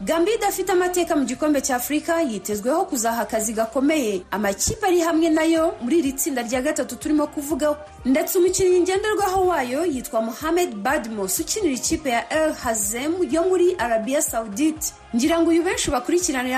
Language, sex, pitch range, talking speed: Swahili, female, 245-330 Hz, 140 wpm